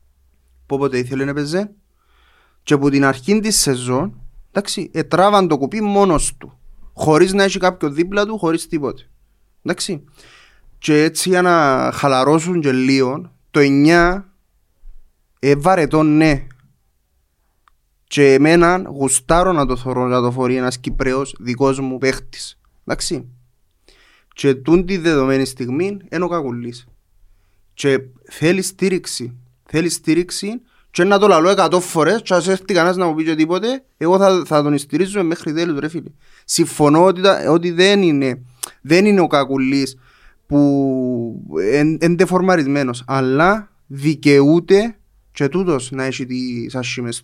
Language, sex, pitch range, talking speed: Greek, male, 130-180 Hz, 135 wpm